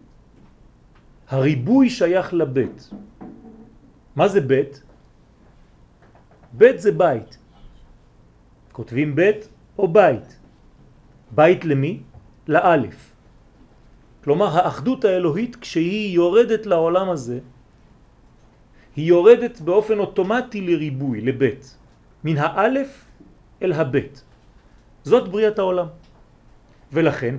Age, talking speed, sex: 40-59, 75 wpm, male